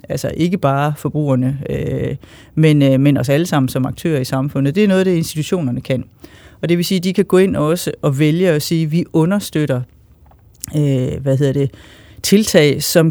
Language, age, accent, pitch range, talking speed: Danish, 40-59, native, 140-180 Hz, 165 wpm